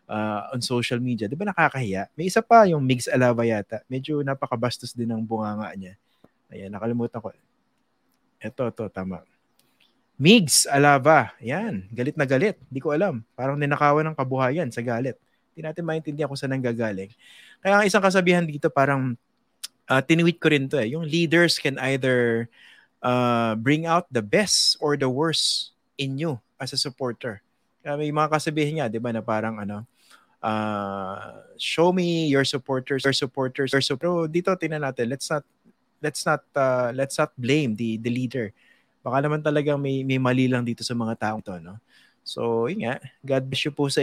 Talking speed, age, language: 175 wpm, 20-39, English